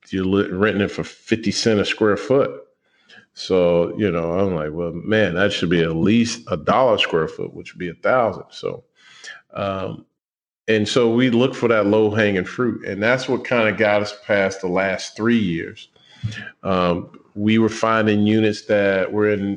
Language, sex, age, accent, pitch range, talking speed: English, male, 40-59, American, 95-115 Hz, 185 wpm